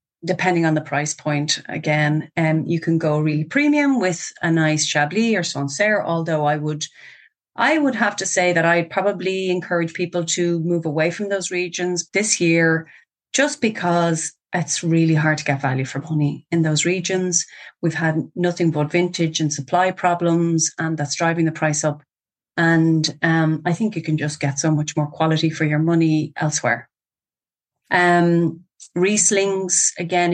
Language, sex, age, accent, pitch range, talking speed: English, female, 30-49, Irish, 155-175 Hz, 170 wpm